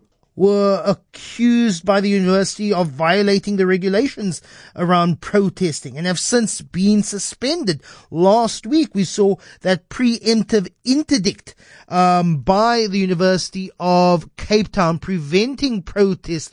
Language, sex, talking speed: English, male, 115 wpm